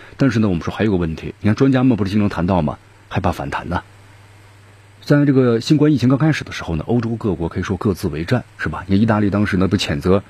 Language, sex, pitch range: Chinese, male, 95-115 Hz